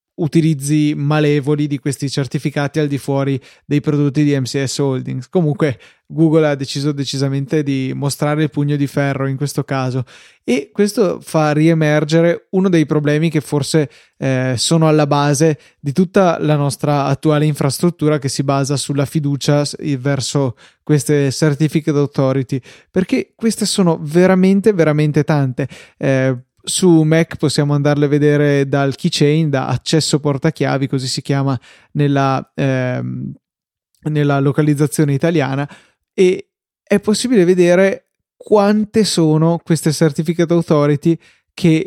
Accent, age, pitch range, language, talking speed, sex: native, 20-39, 140-165 Hz, Italian, 130 wpm, male